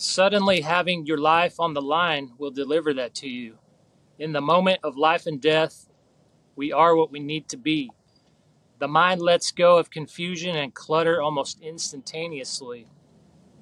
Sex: male